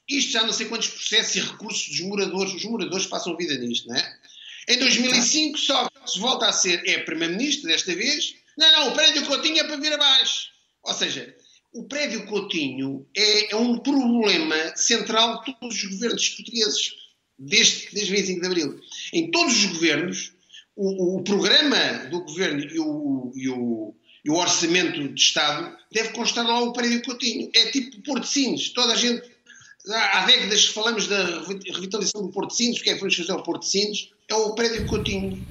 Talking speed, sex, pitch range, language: 185 wpm, male, 165-240 Hz, Portuguese